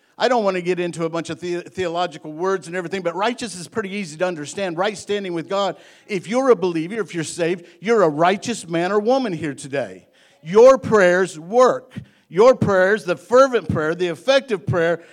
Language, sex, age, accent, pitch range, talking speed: English, male, 50-69, American, 145-200 Hz, 200 wpm